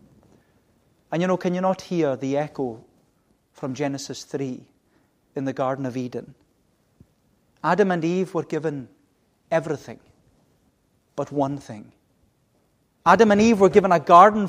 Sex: male